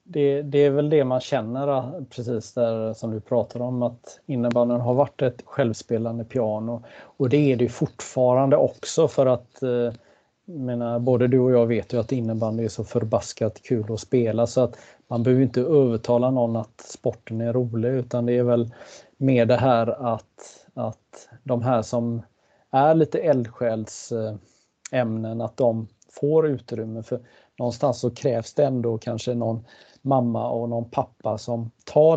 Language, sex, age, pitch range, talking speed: Swedish, male, 30-49, 115-135 Hz, 165 wpm